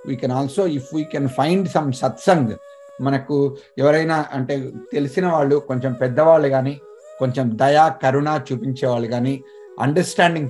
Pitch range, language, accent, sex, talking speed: 135-170 Hz, Telugu, native, male, 130 wpm